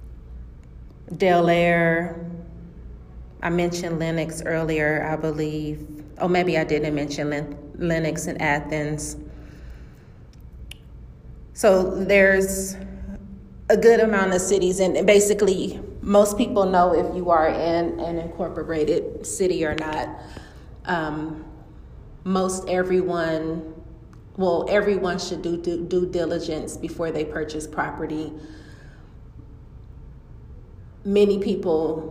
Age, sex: 30-49, female